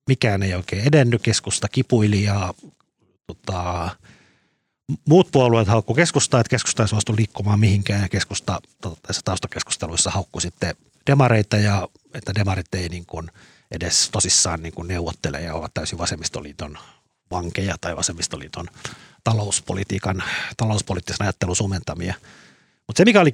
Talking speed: 125 wpm